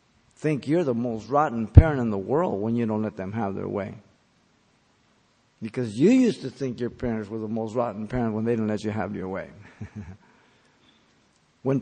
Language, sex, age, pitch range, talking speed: English, male, 50-69, 110-140 Hz, 195 wpm